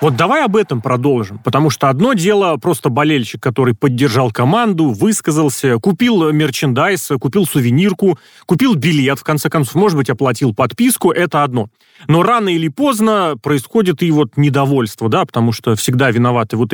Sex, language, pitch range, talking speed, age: male, Russian, 130-170 Hz, 160 wpm, 30-49